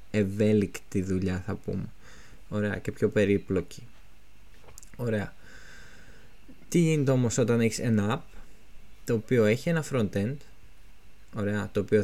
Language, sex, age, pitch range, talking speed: Greek, male, 20-39, 100-120 Hz, 120 wpm